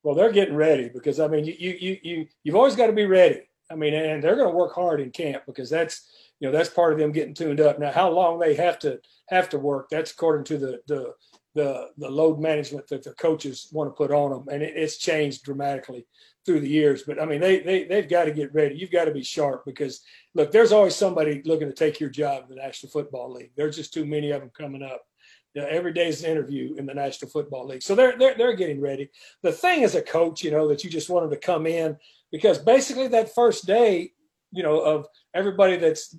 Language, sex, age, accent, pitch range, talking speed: English, male, 40-59, American, 150-180 Hz, 255 wpm